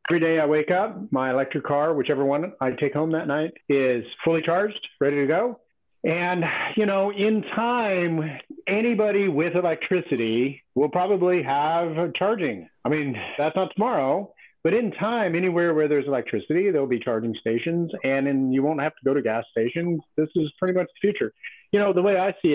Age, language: 50-69, English